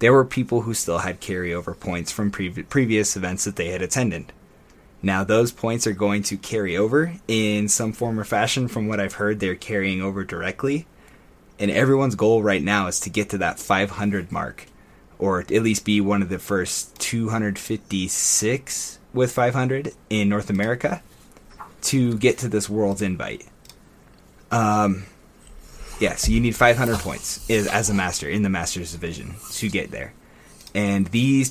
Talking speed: 165 wpm